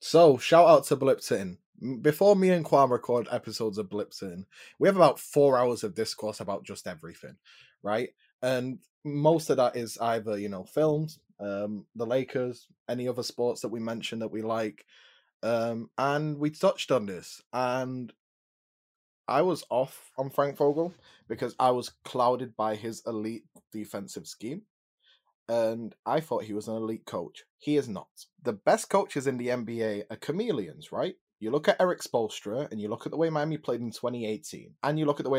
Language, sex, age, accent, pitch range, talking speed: English, male, 20-39, British, 110-150 Hz, 185 wpm